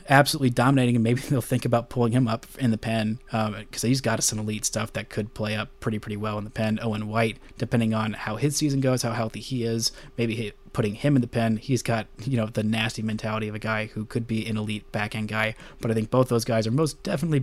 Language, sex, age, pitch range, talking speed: English, male, 20-39, 110-125 Hz, 260 wpm